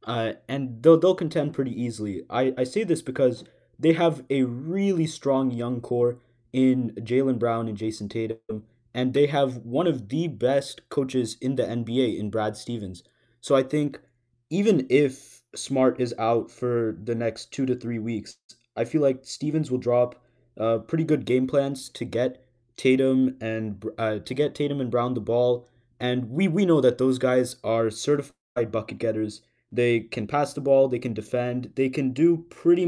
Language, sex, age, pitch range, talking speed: English, male, 20-39, 120-145 Hz, 185 wpm